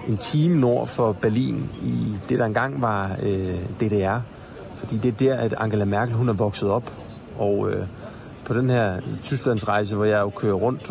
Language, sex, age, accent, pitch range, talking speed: Danish, male, 30-49, native, 110-140 Hz, 185 wpm